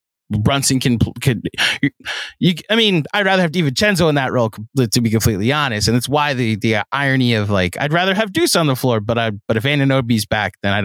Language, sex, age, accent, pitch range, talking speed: English, male, 20-39, American, 105-150 Hz, 225 wpm